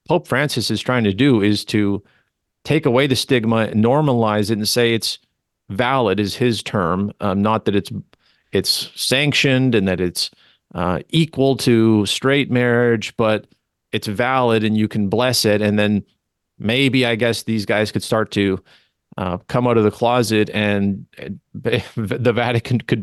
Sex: male